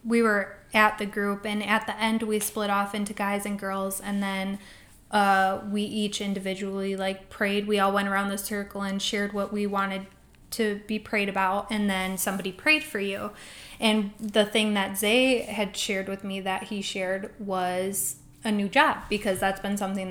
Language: English